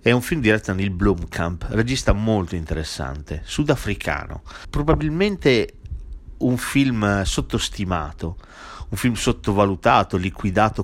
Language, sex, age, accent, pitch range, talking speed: Italian, male, 40-59, native, 90-115 Hz, 105 wpm